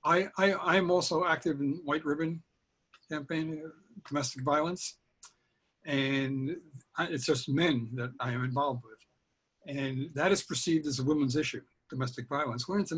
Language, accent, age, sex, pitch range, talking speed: English, American, 60-79, male, 130-165 Hz, 160 wpm